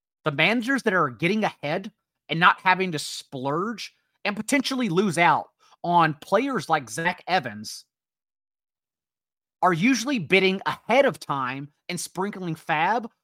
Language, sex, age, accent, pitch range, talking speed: English, male, 30-49, American, 150-200 Hz, 130 wpm